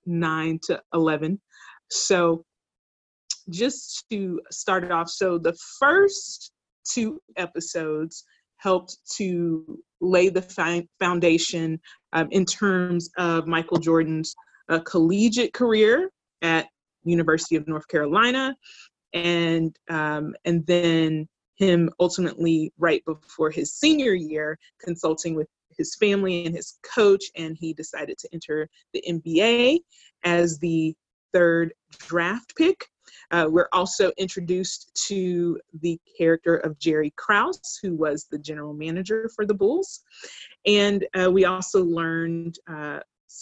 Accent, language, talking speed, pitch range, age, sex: American, English, 120 wpm, 160-200 Hz, 30-49, female